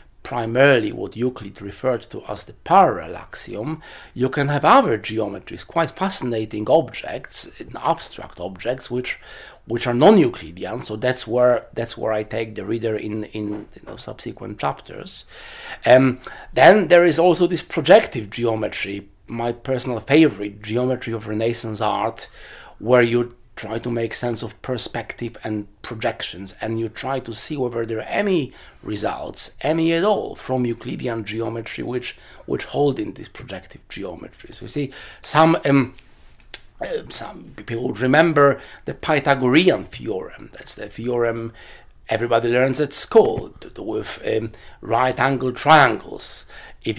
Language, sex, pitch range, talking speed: English, male, 110-135 Hz, 135 wpm